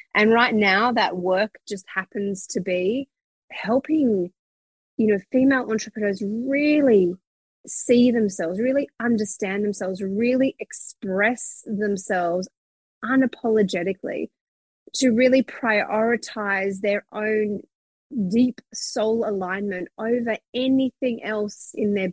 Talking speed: 100 wpm